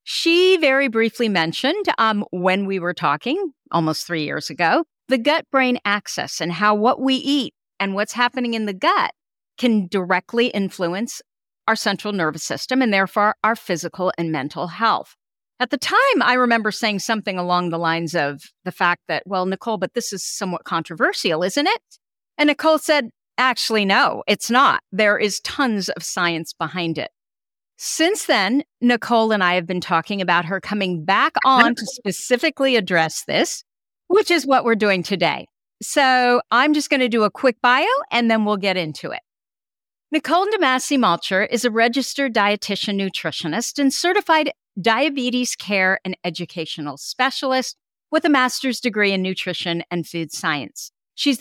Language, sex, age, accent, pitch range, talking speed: English, female, 50-69, American, 185-260 Hz, 165 wpm